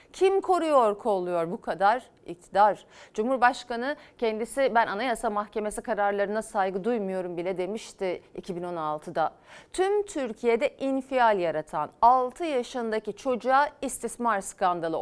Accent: native